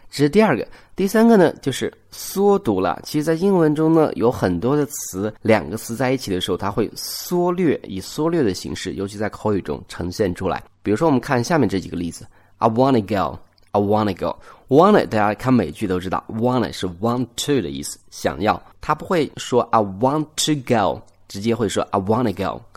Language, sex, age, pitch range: Chinese, male, 20-39, 95-130 Hz